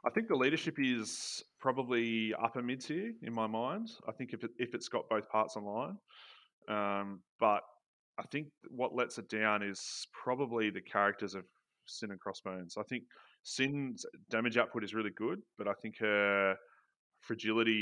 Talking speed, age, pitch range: 170 wpm, 20-39, 95-110 Hz